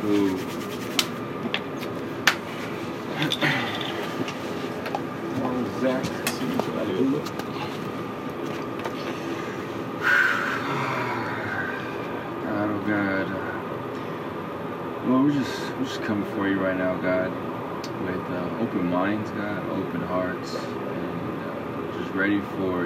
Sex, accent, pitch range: male, American, 85-95 Hz